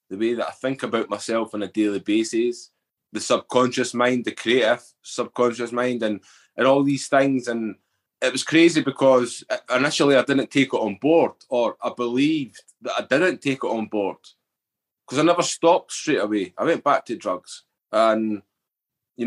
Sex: male